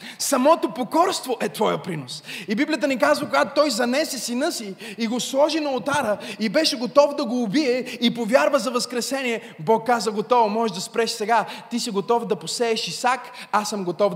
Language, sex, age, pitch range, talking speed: Bulgarian, male, 20-39, 205-285 Hz, 190 wpm